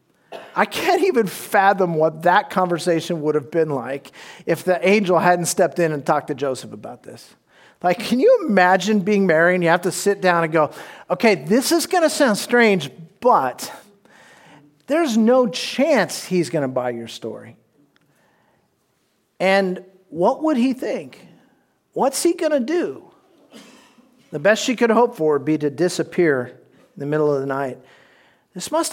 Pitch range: 155-230 Hz